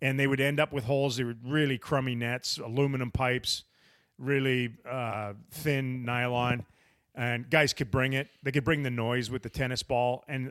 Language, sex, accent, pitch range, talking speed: English, male, American, 115-140 Hz, 190 wpm